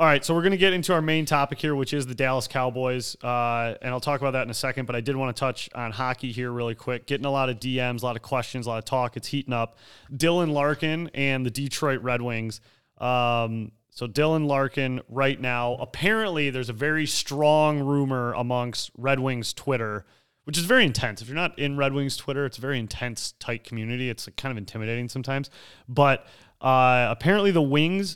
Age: 30-49